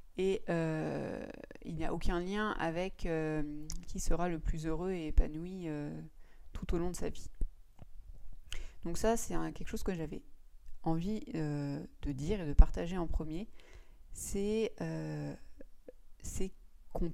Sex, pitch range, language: female, 145-190 Hz, French